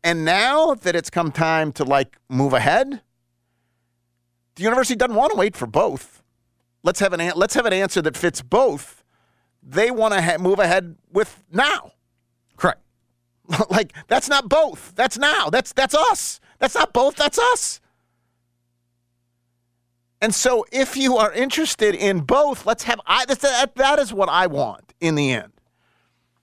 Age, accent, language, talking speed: 40-59, American, English, 165 wpm